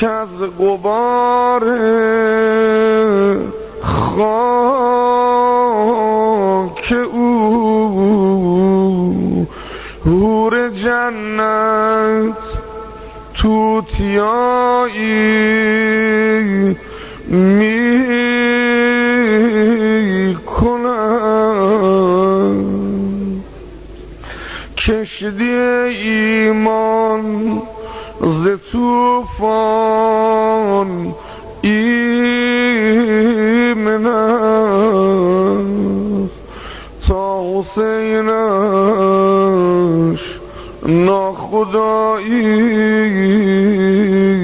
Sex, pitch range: male, 195-220 Hz